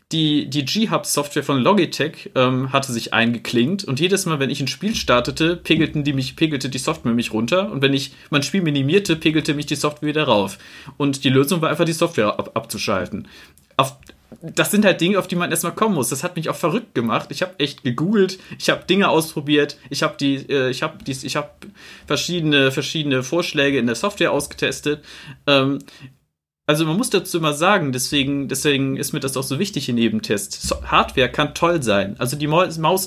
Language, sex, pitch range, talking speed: German, male, 130-160 Hz, 190 wpm